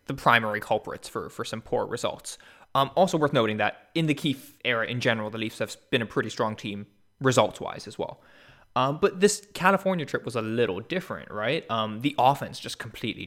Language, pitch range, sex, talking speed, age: English, 110-145 Hz, male, 205 wpm, 20-39